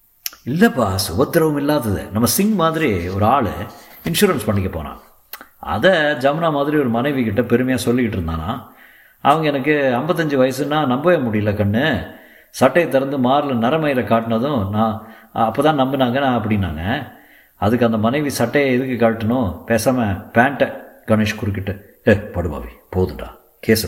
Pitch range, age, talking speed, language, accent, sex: 100-140 Hz, 50-69, 130 wpm, Tamil, native, male